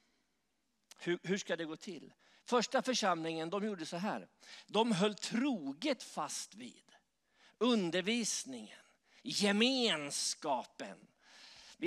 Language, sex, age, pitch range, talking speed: English, male, 50-69, 175-235 Hz, 95 wpm